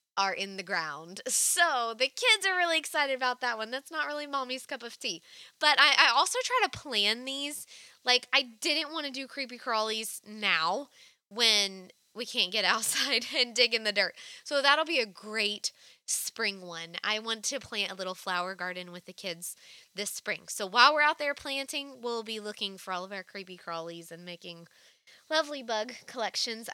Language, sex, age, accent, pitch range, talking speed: English, female, 20-39, American, 185-250 Hz, 195 wpm